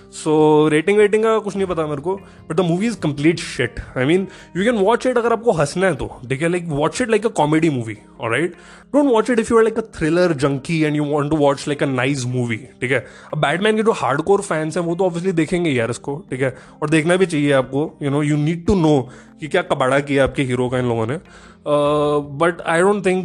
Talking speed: 255 wpm